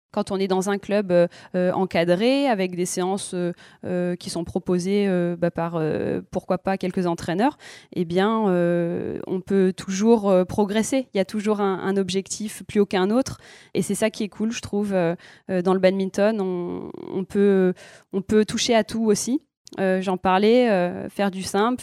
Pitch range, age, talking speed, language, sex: 185-210 Hz, 20-39, 195 wpm, French, female